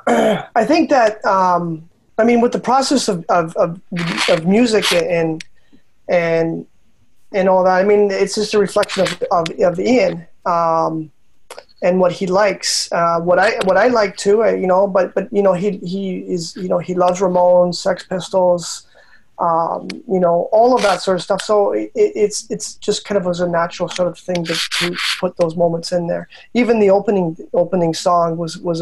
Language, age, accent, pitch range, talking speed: English, 20-39, American, 170-190 Hz, 195 wpm